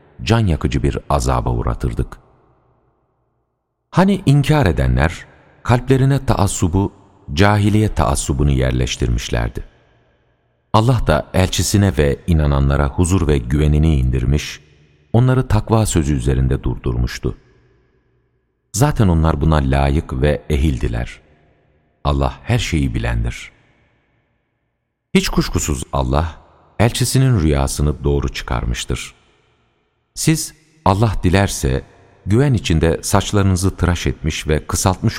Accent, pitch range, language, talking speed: native, 70-105 Hz, Turkish, 90 wpm